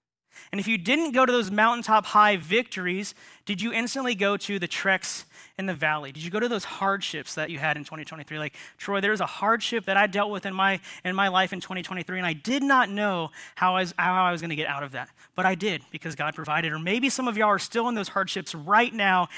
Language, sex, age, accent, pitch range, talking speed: English, male, 30-49, American, 185-235 Hz, 250 wpm